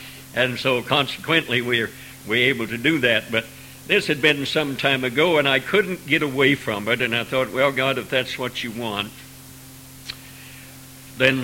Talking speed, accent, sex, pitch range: 180 wpm, American, male, 130-145 Hz